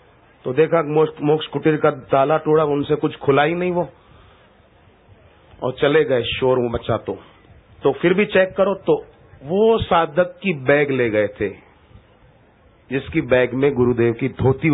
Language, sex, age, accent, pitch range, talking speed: Hindi, male, 40-59, native, 120-170 Hz, 160 wpm